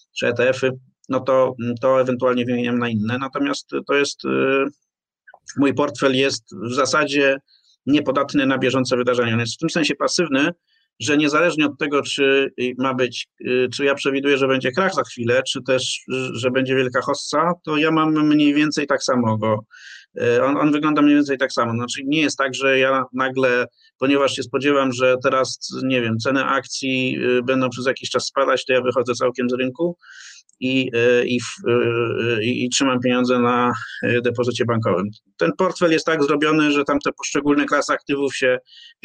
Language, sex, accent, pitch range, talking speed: Polish, male, native, 125-145 Hz, 170 wpm